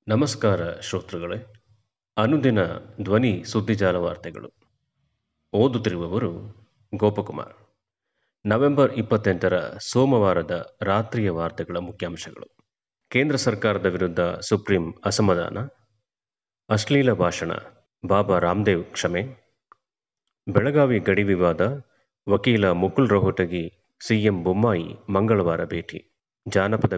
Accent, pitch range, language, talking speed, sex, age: native, 95-120 Hz, Kannada, 80 wpm, male, 30-49